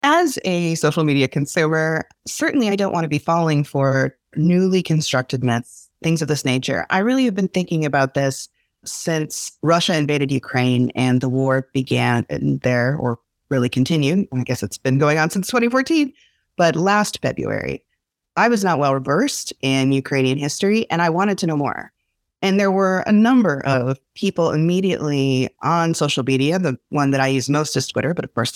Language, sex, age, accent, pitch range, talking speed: English, female, 30-49, American, 135-185 Hz, 180 wpm